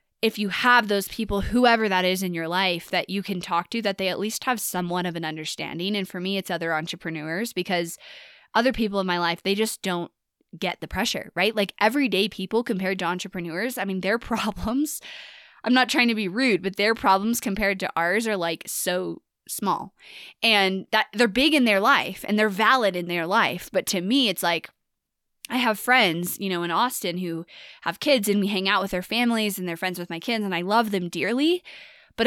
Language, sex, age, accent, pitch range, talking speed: English, female, 20-39, American, 185-240 Hz, 220 wpm